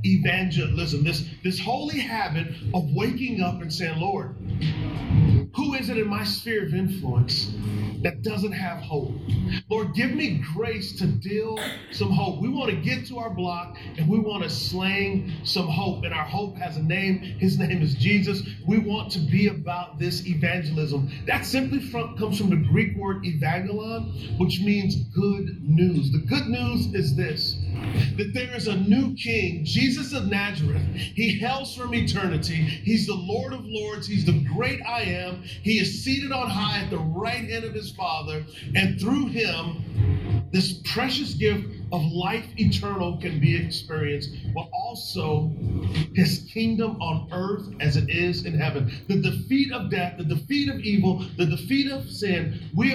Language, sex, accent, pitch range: English, male, American, 135-195 Hz